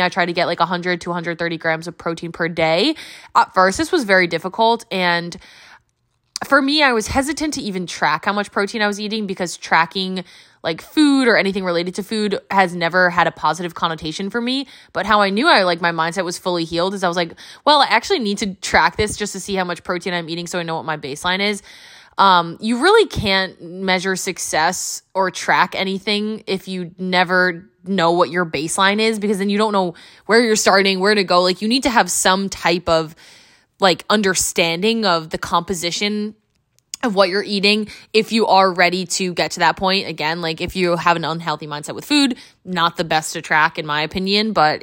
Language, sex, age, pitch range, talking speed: English, female, 20-39, 170-205 Hz, 215 wpm